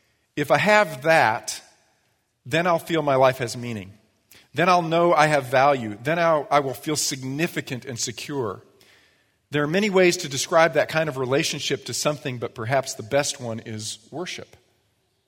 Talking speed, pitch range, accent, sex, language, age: 170 wpm, 125-165 Hz, American, male, English, 40-59